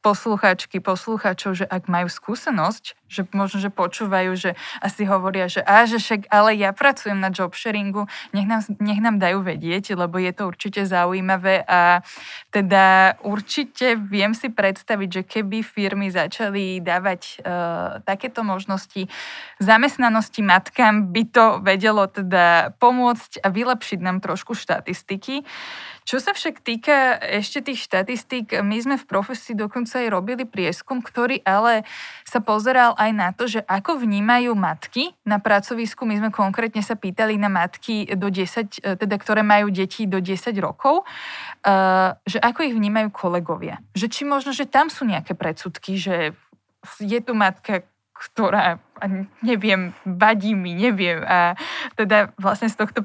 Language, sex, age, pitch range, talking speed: Slovak, female, 20-39, 190-230 Hz, 145 wpm